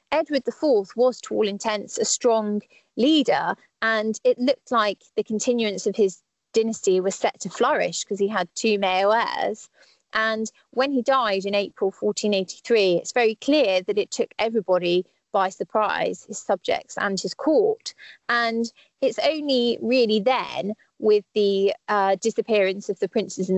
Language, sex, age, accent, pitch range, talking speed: English, female, 20-39, British, 195-250 Hz, 160 wpm